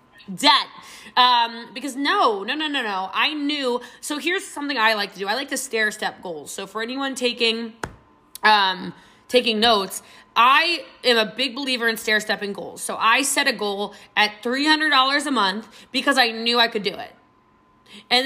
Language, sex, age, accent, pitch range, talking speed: English, female, 20-39, American, 215-285 Hz, 190 wpm